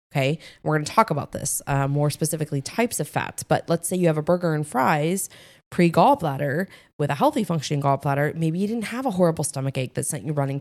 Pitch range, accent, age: 145-180 Hz, American, 20-39